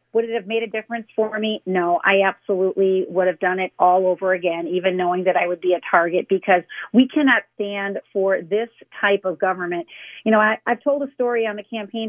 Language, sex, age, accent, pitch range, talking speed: English, female, 40-59, American, 190-235 Hz, 220 wpm